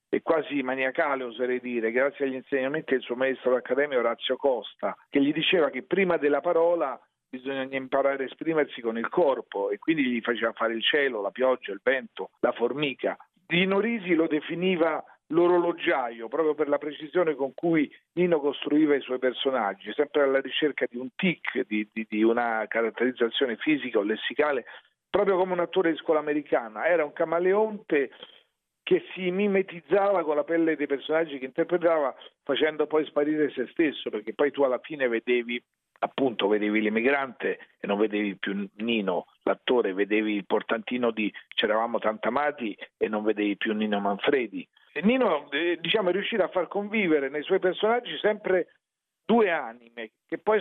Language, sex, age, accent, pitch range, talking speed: Italian, male, 50-69, native, 125-180 Hz, 165 wpm